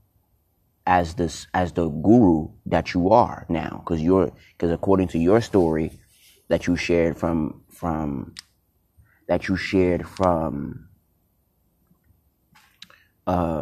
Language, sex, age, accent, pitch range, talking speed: English, male, 30-49, American, 85-100 Hz, 115 wpm